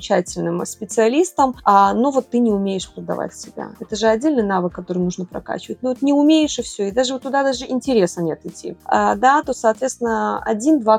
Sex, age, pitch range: female, 20-39, 200-250 Hz